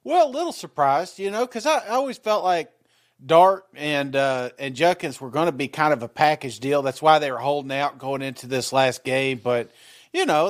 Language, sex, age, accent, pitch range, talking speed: English, male, 40-59, American, 145-190 Hz, 225 wpm